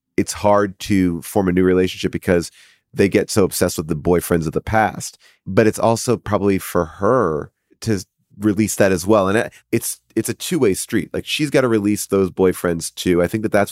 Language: English